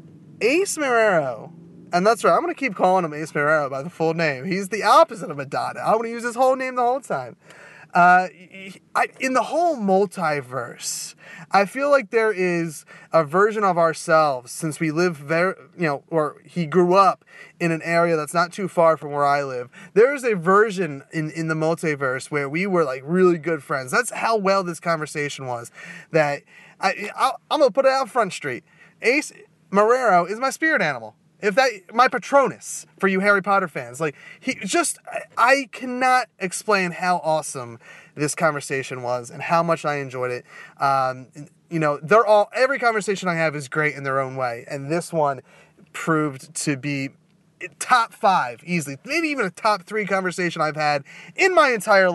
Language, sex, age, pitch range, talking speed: English, male, 30-49, 155-210 Hz, 190 wpm